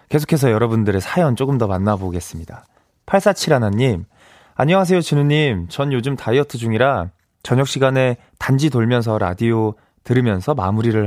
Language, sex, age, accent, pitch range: Korean, male, 20-39, native, 100-150 Hz